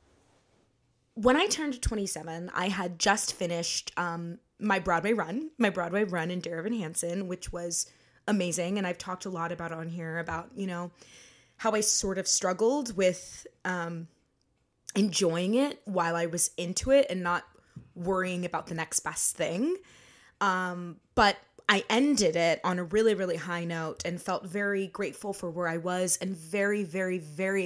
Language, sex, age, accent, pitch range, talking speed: English, female, 20-39, American, 170-210 Hz, 170 wpm